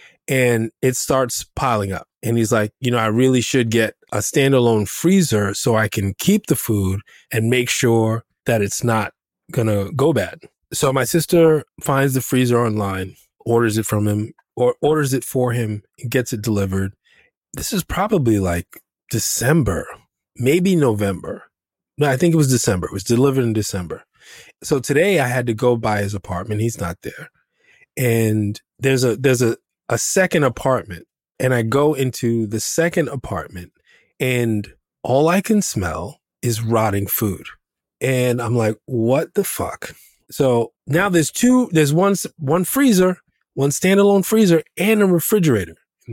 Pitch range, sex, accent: 110-160 Hz, male, American